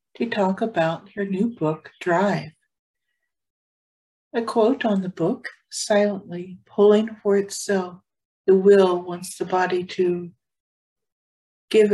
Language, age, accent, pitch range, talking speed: English, 60-79, American, 165-195 Hz, 115 wpm